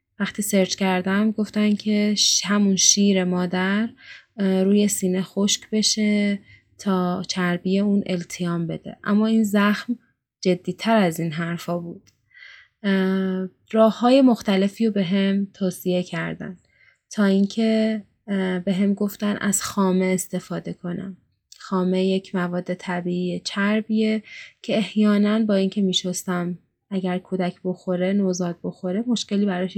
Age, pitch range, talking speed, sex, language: 20-39, 180-205 Hz, 120 wpm, female, Persian